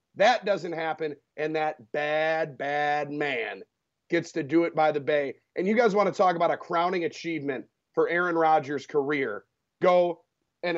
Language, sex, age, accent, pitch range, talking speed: English, male, 30-49, American, 155-225 Hz, 175 wpm